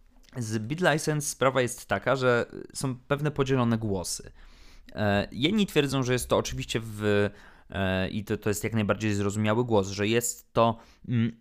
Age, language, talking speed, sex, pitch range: 20-39, Polish, 170 wpm, male, 100-120 Hz